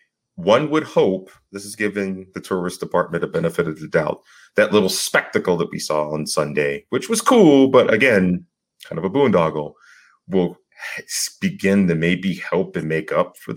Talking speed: 175 wpm